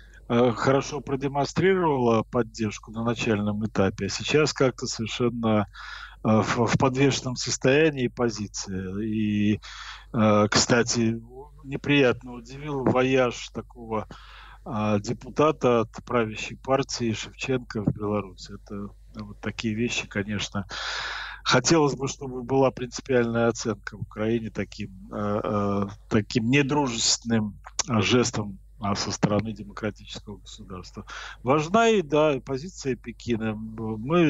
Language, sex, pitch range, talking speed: Ukrainian, male, 110-135 Hz, 95 wpm